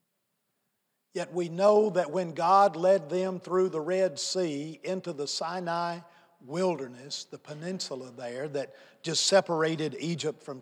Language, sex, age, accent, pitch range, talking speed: English, male, 50-69, American, 160-200 Hz, 135 wpm